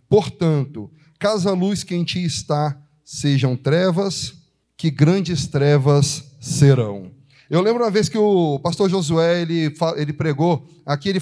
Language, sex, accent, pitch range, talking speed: Portuguese, male, Brazilian, 150-195 Hz, 140 wpm